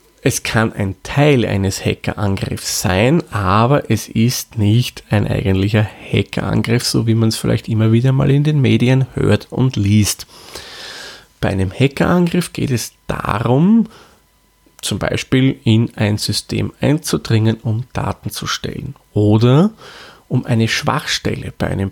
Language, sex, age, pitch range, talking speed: German, male, 30-49, 100-125 Hz, 135 wpm